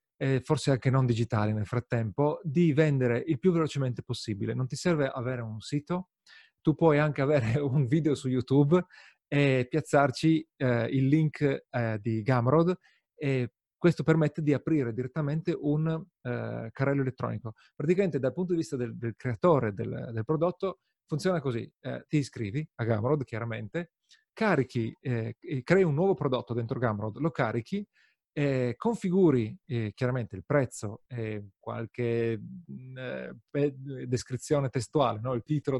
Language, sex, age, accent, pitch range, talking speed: Italian, male, 40-59, native, 120-160 Hz, 150 wpm